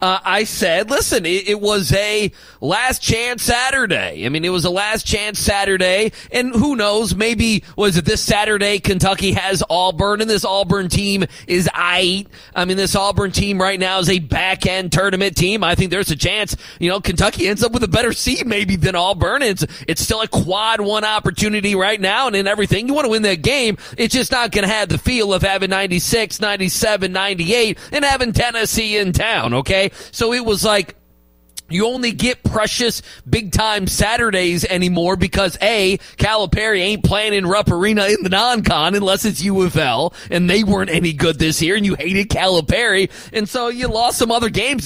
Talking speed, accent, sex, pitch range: 195 wpm, American, male, 185-225 Hz